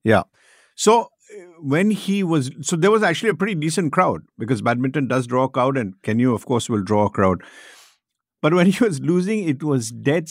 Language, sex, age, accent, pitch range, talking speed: English, male, 50-69, Indian, 125-170 Hz, 205 wpm